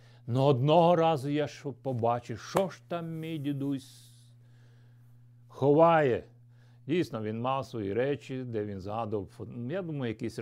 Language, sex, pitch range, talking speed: Ukrainian, male, 120-135 Hz, 125 wpm